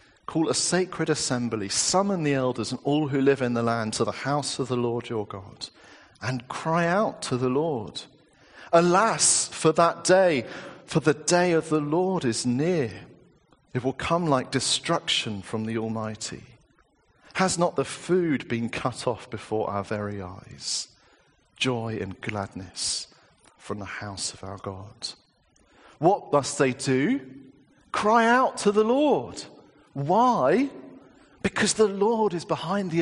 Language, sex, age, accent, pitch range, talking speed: English, male, 40-59, British, 125-180 Hz, 155 wpm